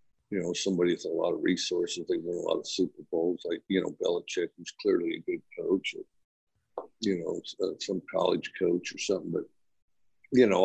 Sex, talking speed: male, 205 wpm